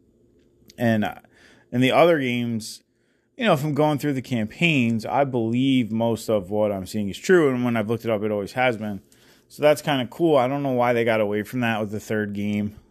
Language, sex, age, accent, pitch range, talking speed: English, male, 30-49, American, 95-120 Hz, 230 wpm